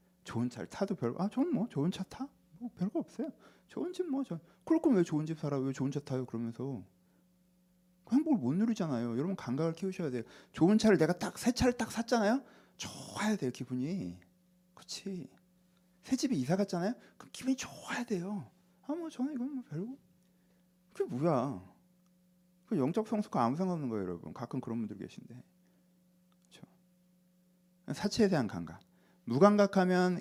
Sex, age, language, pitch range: male, 40-59, Korean, 130-205 Hz